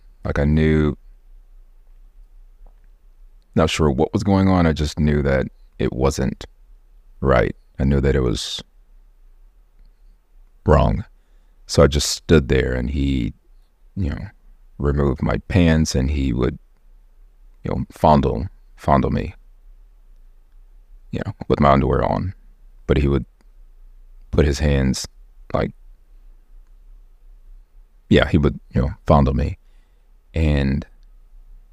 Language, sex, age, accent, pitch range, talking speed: English, male, 30-49, American, 70-80 Hz, 120 wpm